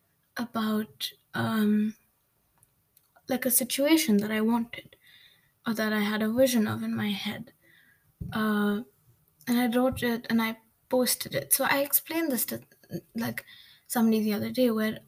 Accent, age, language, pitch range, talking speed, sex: Indian, 20-39, English, 210-255 Hz, 150 wpm, female